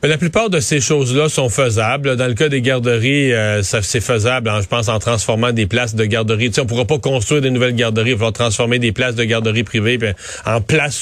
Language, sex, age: French, male, 40-59